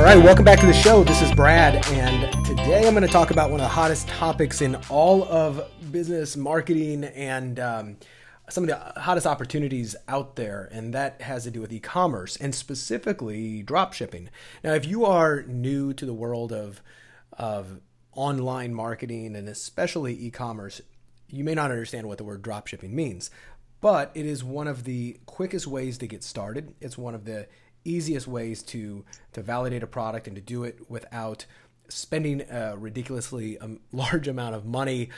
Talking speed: 180 wpm